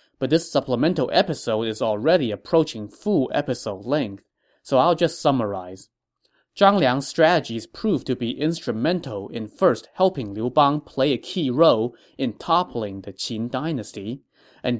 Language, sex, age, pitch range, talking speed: English, male, 20-39, 110-155 Hz, 145 wpm